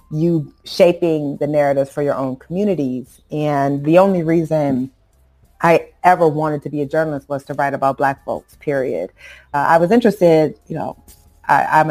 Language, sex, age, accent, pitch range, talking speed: English, female, 30-49, American, 140-160 Hz, 165 wpm